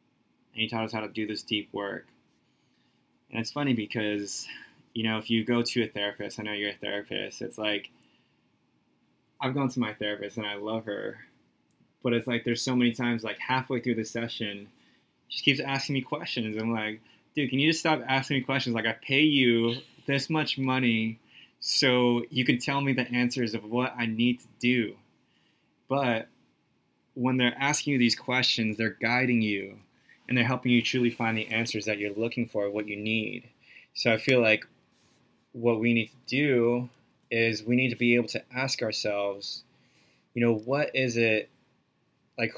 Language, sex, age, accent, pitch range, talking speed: English, male, 20-39, American, 110-125 Hz, 190 wpm